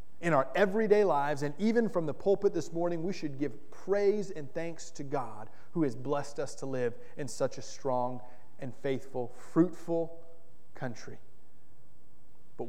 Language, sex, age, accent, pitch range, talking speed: English, male, 30-49, American, 125-165 Hz, 160 wpm